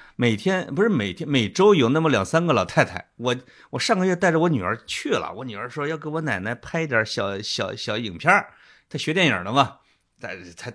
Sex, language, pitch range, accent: male, Chinese, 115-180 Hz, native